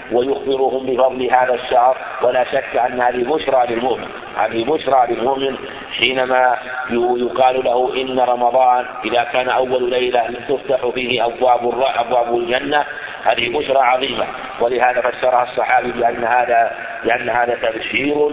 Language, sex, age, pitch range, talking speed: Arabic, male, 50-69, 125-135 Hz, 125 wpm